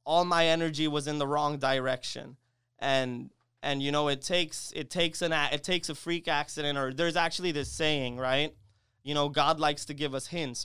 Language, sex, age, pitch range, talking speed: English, male, 20-39, 135-160 Hz, 210 wpm